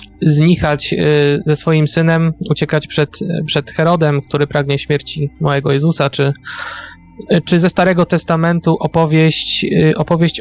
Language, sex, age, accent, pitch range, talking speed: Polish, male, 20-39, native, 145-165 Hz, 115 wpm